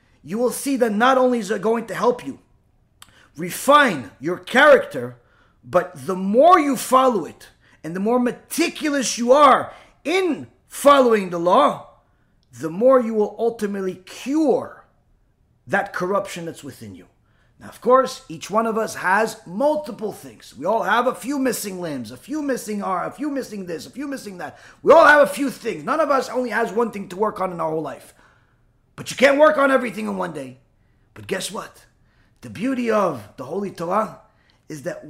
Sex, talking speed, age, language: male, 190 wpm, 30-49, English